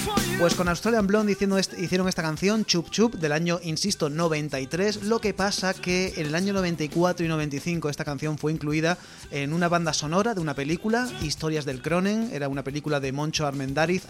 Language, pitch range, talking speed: Spanish, 135-170 Hz, 185 wpm